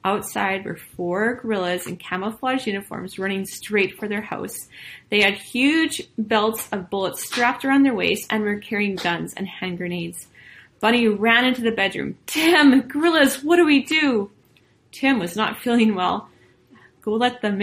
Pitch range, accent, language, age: 185-255 Hz, American, English, 30-49